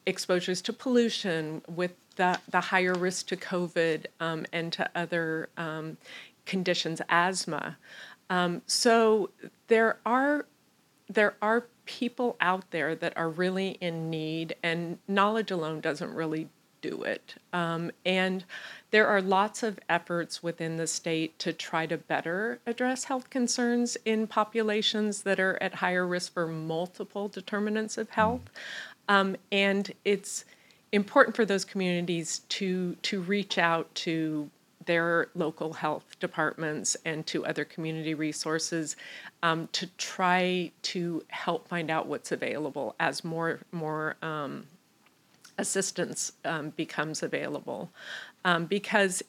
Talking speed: 130 wpm